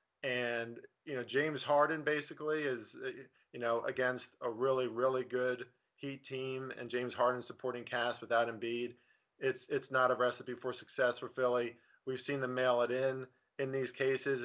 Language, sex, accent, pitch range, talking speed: English, male, American, 120-130 Hz, 170 wpm